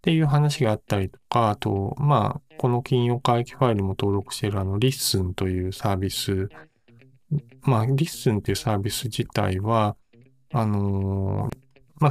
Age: 20-39